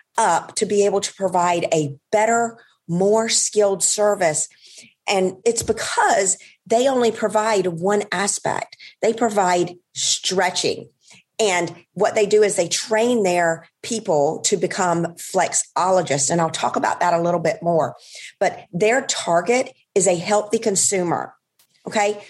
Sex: female